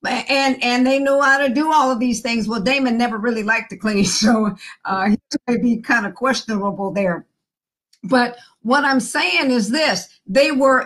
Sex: female